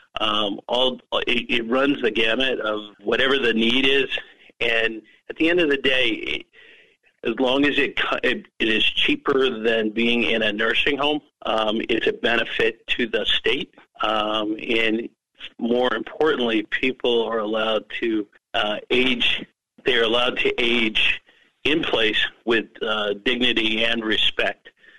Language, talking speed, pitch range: English, 150 wpm, 110-165 Hz